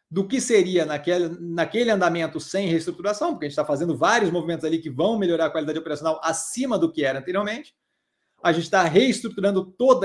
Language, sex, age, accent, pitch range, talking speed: Portuguese, male, 30-49, Brazilian, 170-230 Hz, 190 wpm